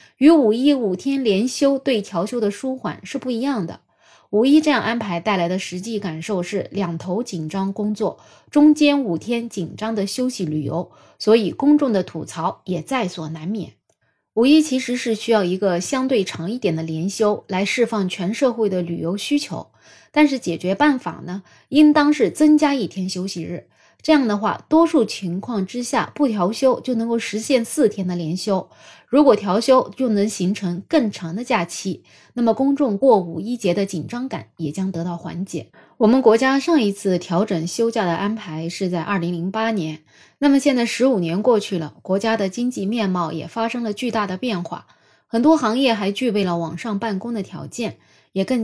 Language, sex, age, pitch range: Chinese, female, 20-39, 180-245 Hz